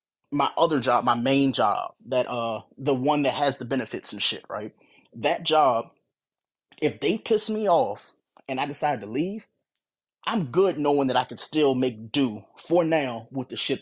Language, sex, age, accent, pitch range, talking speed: English, male, 20-39, American, 125-155 Hz, 185 wpm